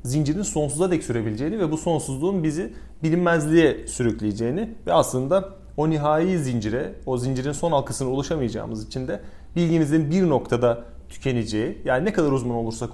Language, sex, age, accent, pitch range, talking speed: Turkish, male, 30-49, native, 125-180 Hz, 145 wpm